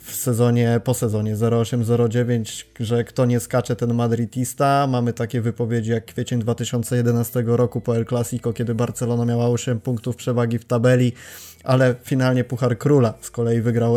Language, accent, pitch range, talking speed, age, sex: Polish, native, 120-125 Hz, 155 wpm, 20-39, male